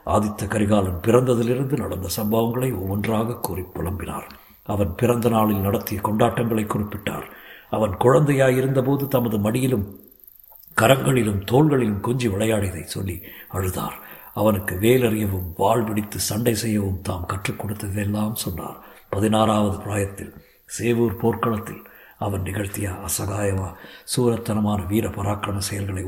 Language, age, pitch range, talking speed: Tamil, 60-79, 100-115 Hz, 95 wpm